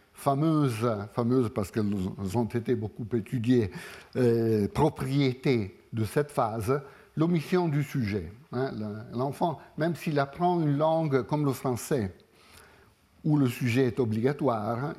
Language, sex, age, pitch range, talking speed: French, male, 60-79, 115-145 Hz, 110 wpm